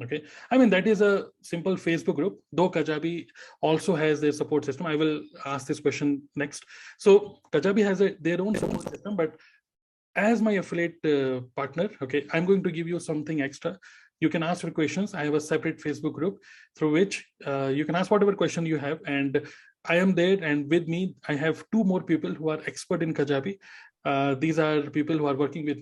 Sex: male